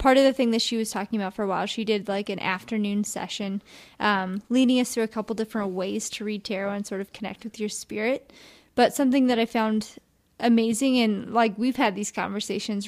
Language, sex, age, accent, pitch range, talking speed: English, female, 20-39, American, 210-235 Hz, 225 wpm